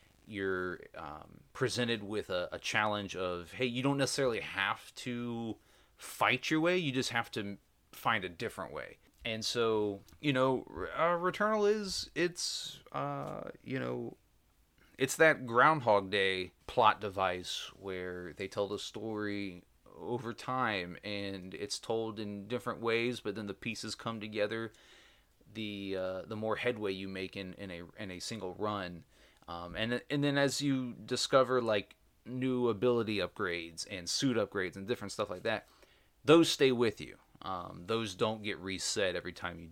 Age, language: 30-49, English